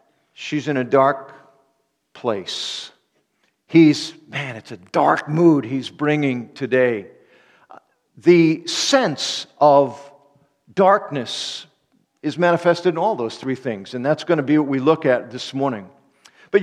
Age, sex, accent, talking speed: 50-69, male, American, 135 wpm